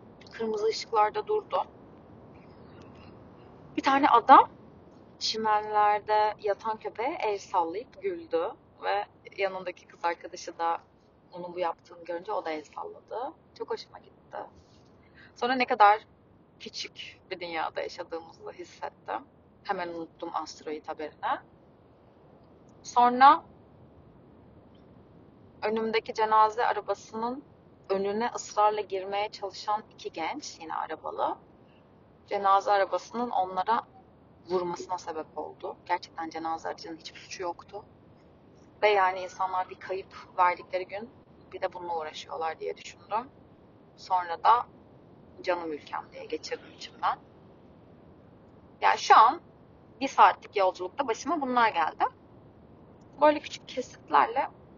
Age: 30-49